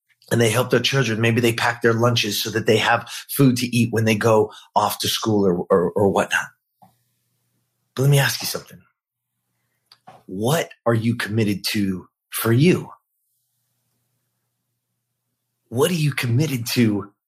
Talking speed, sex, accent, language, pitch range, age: 155 wpm, male, American, English, 115-140 Hz, 30-49